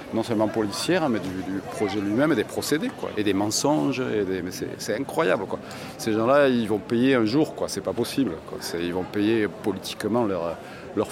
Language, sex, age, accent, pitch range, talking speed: French, male, 40-59, French, 100-125 Hz, 220 wpm